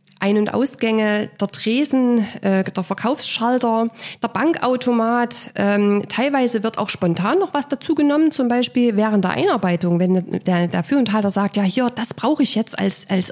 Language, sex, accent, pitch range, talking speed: German, female, German, 180-240 Hz, 175 wpm